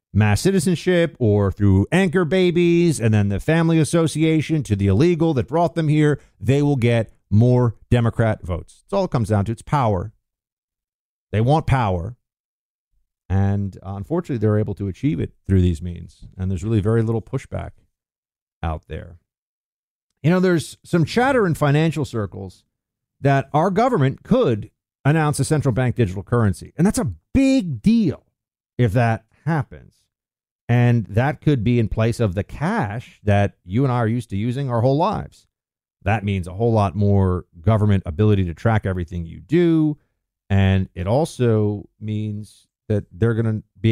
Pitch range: 100-140 Hz